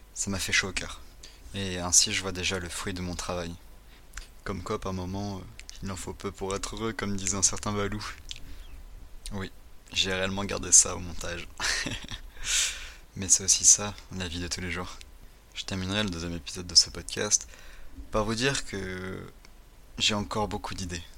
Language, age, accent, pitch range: French, 20-39, French, 85-100 Hz